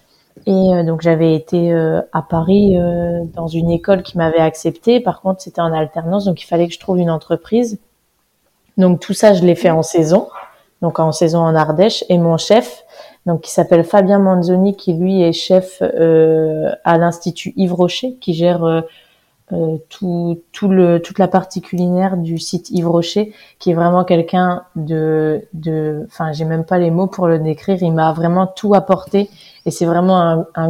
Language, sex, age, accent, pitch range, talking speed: French, female, 20-39, French, 165-195 Hz, 180 wpm